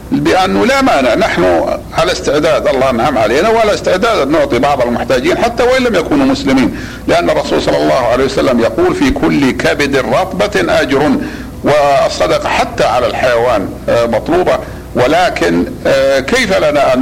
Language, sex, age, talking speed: Arabic, male, 60-79, 145 wpm